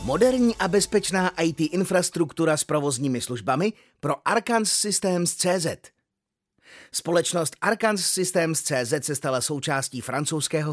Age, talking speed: 30-49, 100 wpm